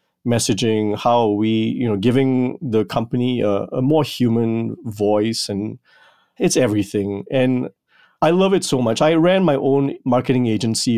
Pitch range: 110-135 Hz